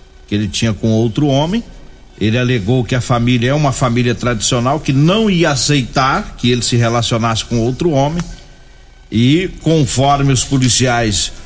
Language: Portuguese